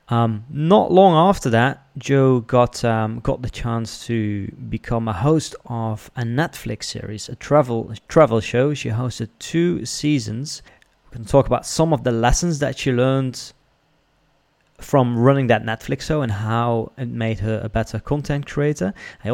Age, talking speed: 30-49, 170 wpm